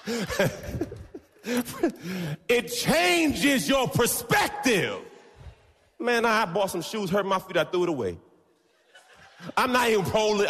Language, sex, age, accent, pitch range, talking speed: English, male, 30-49, American, 125-210 Hz, 115 wpm